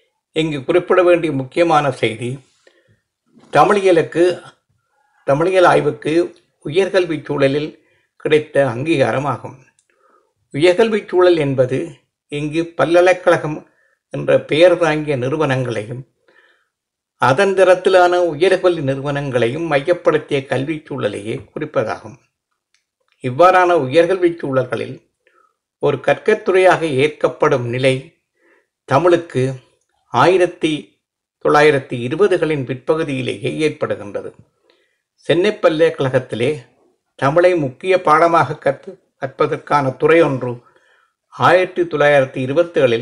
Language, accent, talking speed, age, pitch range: Tamil, native, 70 wpm, 60-79, 140-180 Hz